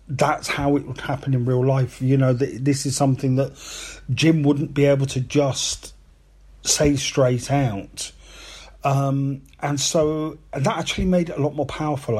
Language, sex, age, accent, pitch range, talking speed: English, male, 40-59, British, 125-145 Hz, 165 wpm